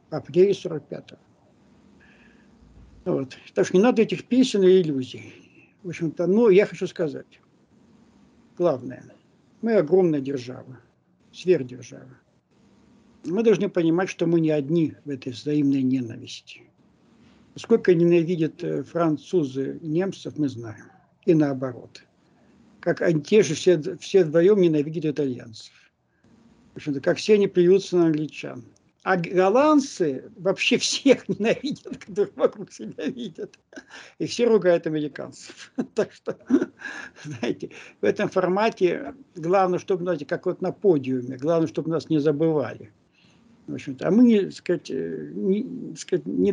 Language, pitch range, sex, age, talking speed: Russian, 150-205 Hz, male, 60-79, 120 wpm